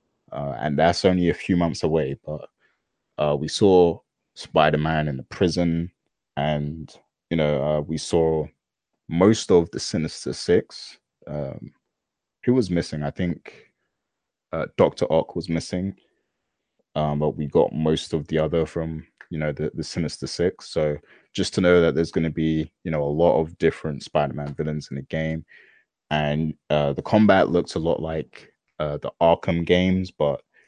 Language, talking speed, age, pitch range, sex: English, 170 wpm, 20-39, 75-85 Hz, male